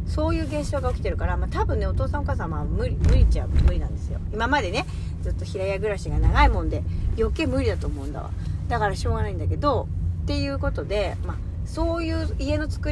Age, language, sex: 30-49, Japanese, female